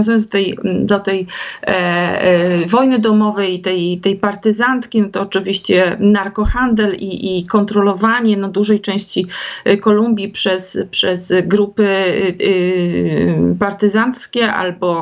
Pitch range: 190-220 Hz